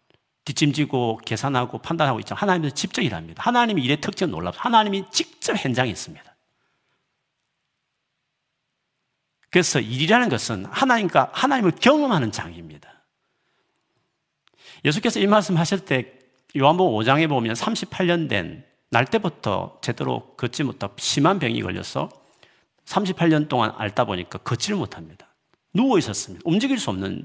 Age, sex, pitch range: 40-59, male, 110-165 Hz